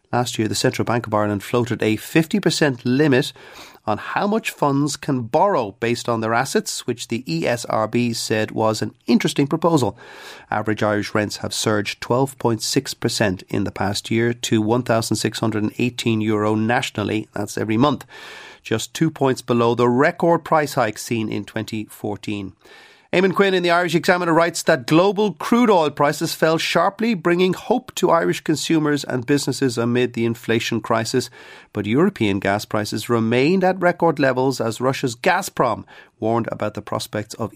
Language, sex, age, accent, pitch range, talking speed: English, male, 30-49, Irish, 110-155 Hz, 155 wpm